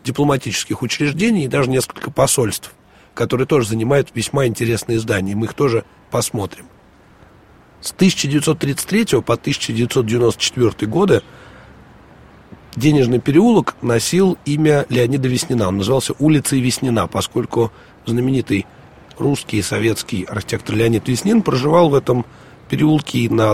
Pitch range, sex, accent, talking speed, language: 110-150 Hz, male, native, 115 wpm, Russian